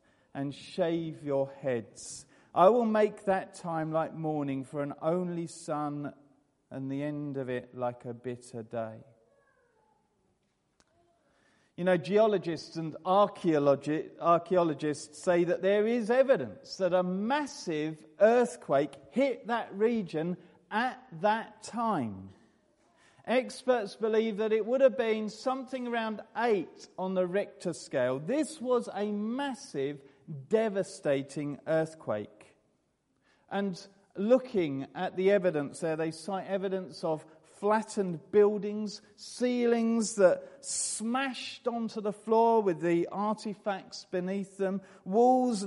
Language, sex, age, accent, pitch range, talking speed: English, male, 40-59, British, 160-230 Hz, 115 wpm